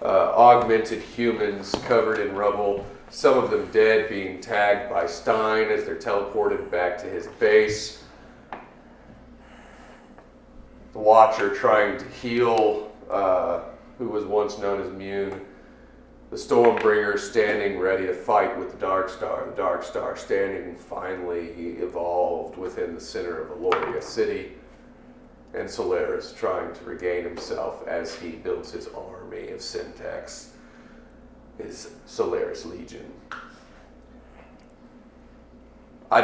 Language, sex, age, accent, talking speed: English, male, 40-59, American, 120 wpm